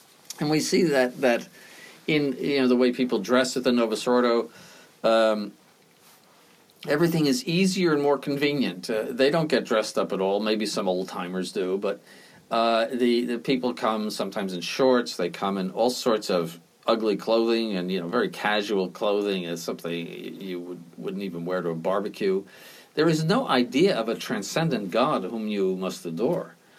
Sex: male